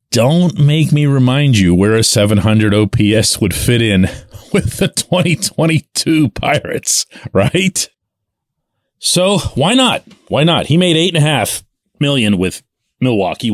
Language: English